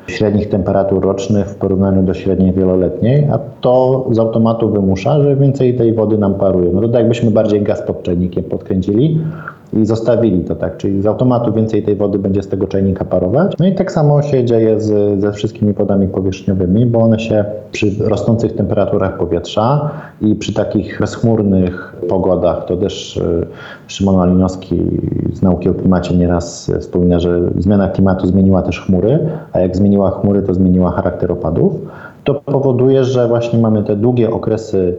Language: Polish